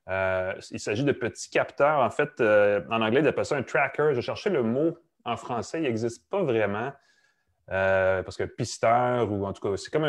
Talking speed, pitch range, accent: 215 wpm, 95-125 Hz, Canadian